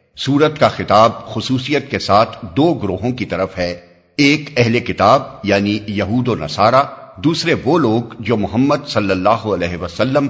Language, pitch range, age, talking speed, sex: Urdu, 100-130 Hz, 50-69, 155 wpm, male